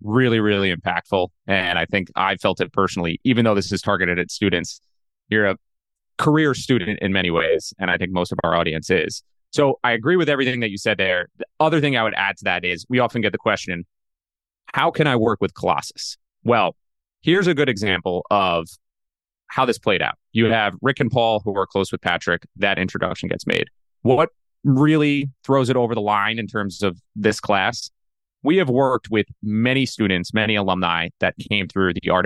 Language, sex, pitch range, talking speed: English, male, 95-115 Hz, 205 wpm